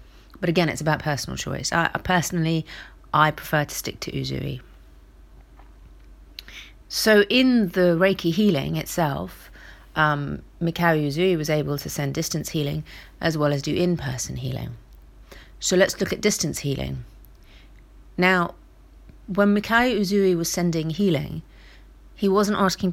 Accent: British